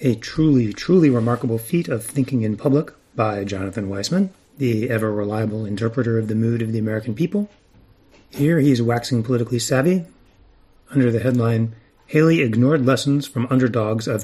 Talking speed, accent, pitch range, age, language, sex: 155 wpm, American, 110-135 Hz, 30-49, English, male